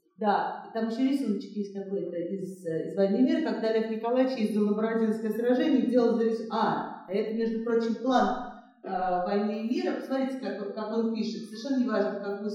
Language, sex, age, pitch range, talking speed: Russian, female, 30-49, 205-260 Hz, 175 wpm